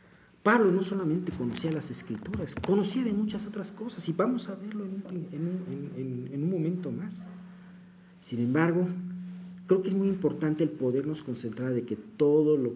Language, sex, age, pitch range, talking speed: Spanish, male, 50-69, 115-180 Hz, 160 wpm